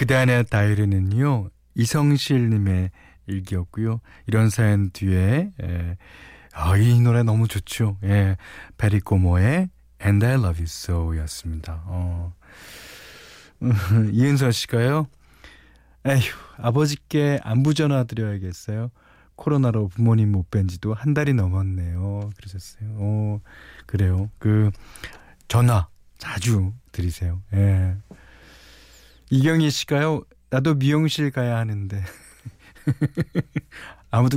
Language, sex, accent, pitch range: Korean, male, native, 95-130 Hz